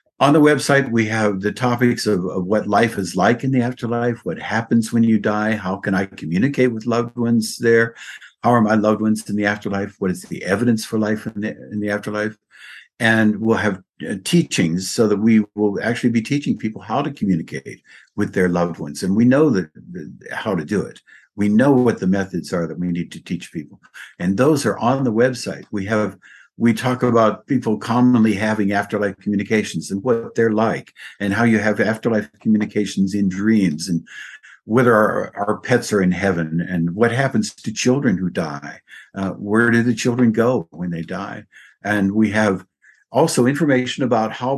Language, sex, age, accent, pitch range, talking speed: English, male, 60-79, American, 100-120 Hz, 195 wpm